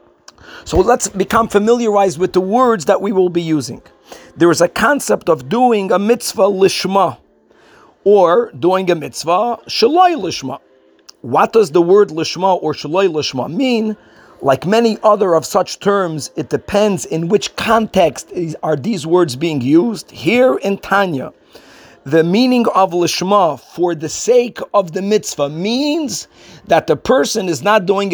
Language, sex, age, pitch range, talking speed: English, male, 50-69, 175-235 Hz, 155 wpm